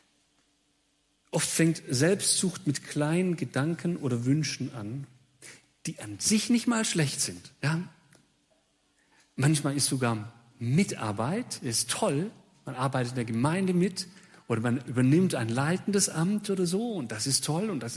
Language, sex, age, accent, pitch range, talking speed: German, male, 40-59, German, 125-170 Hz, 140 wpm